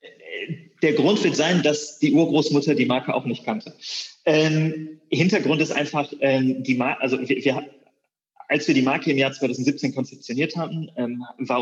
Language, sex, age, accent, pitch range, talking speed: German, male, 30-49, German, 130-160 Hz, 175 wpm